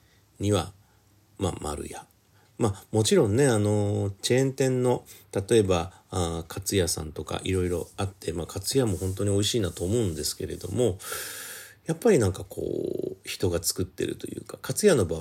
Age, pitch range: 40-59, 85-105 Hz